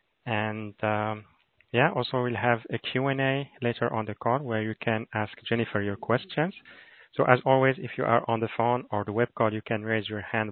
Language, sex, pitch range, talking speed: English, male, 110-125 Hz, 215 wpm